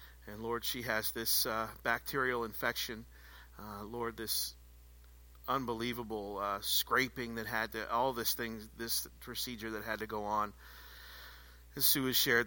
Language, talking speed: English, 150 wpm